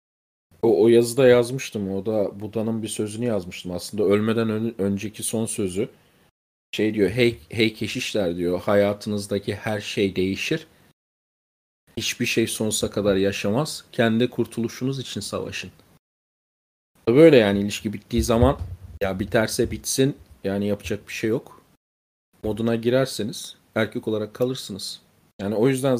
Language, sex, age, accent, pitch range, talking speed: Turkish, male, 40-59, native, 105-125 Hz, 130 wpm